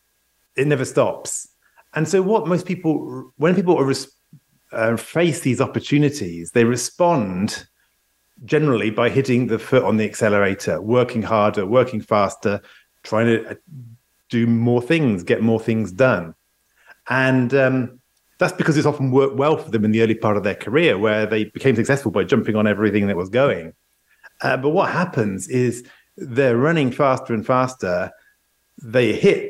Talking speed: 155 wpm